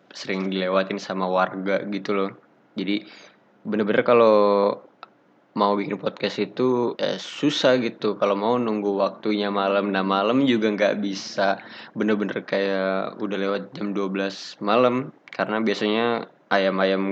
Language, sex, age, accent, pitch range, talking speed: Indonesian, male, 20-39, native, 100-115 Hz, 130 wpm